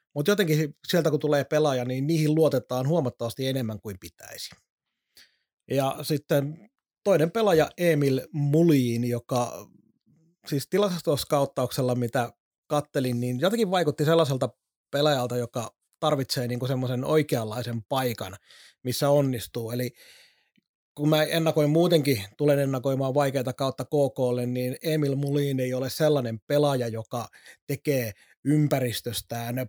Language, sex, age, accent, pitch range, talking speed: Finnish, male, 30-49, native, 125-155 Hz, 115 wpm